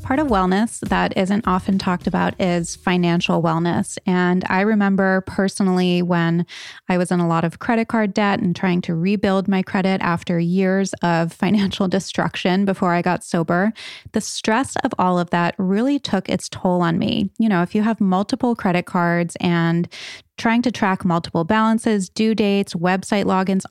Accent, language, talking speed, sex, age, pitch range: American, English, 175 wpm, female, 20-39, 180-210 Hz